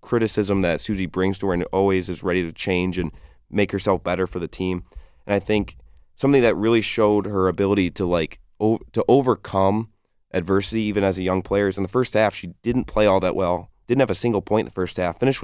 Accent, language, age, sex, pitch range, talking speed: American, English, 30-49, male, 90-100 Hz, 235 wpm